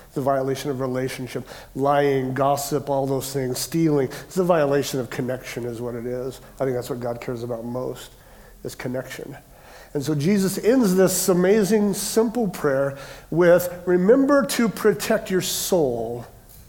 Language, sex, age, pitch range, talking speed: English, male, 50-69, 130-175 Hz, 155 wpm